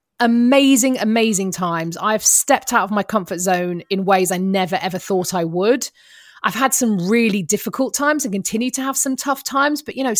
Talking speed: 200 wpm